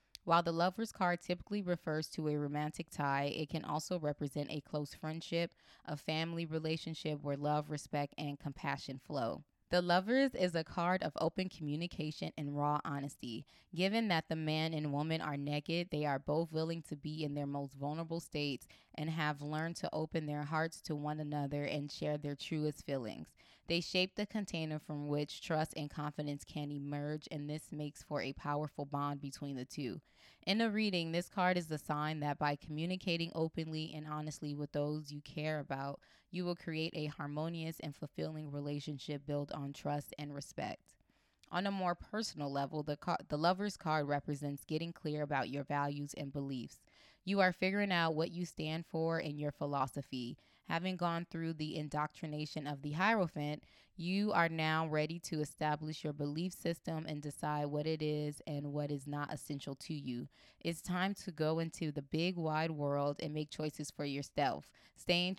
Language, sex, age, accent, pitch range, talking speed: English, female, 20-39, American, 145-165 Hz, 180 wpm